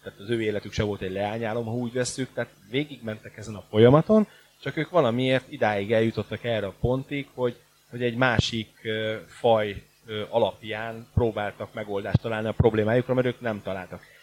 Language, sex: Hungarian, male